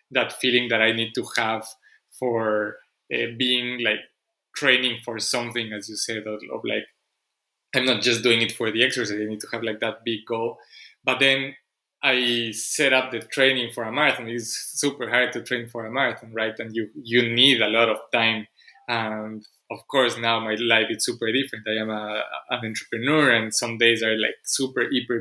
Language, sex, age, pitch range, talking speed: English, male, 20-39, 110-125 Hz, 200 wpm